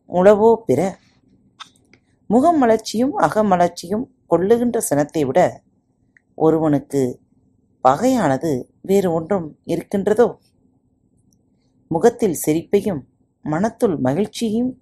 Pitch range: 145-225 Hz